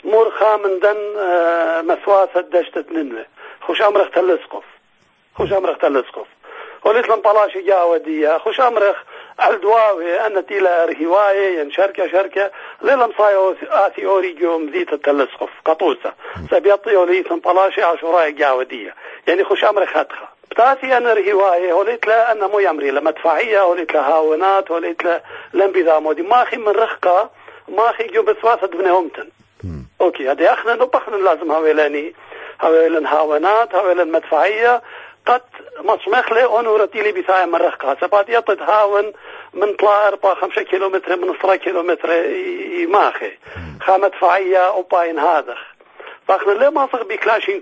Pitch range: 170-220 Hz